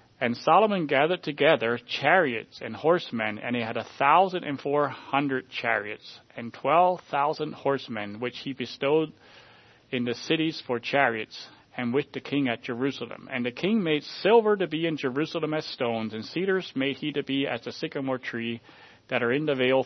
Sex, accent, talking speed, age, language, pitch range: male, American, 170 wpm, 40-59, English, 125-160 Hz